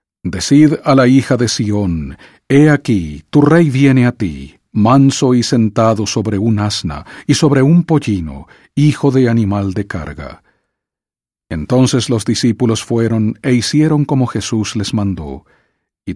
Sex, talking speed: male, 145 wpm